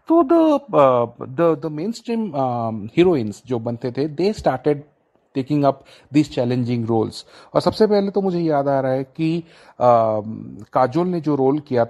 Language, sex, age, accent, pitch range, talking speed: Hindi, male, 30-49, native, 130-175 Hz, 130 wpm